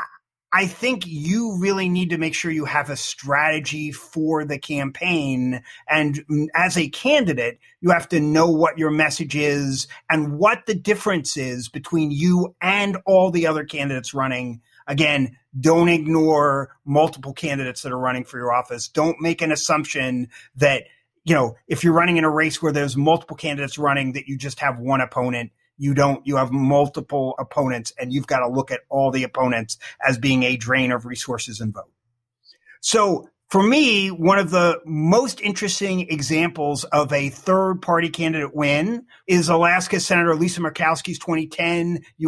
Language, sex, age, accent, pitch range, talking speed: English, male, 30-49, American, 145-190 Hz, 170 wpm